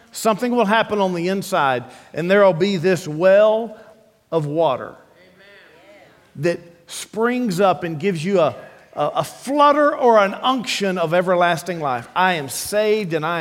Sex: male